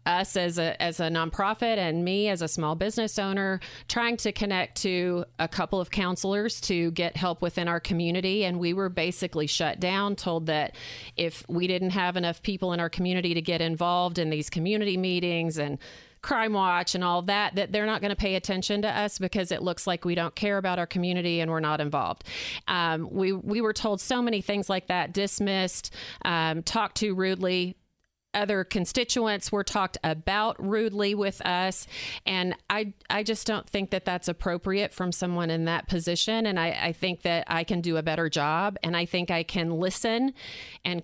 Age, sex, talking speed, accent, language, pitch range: 40-59, female, 195 wpm, American, English, 175-210 Hz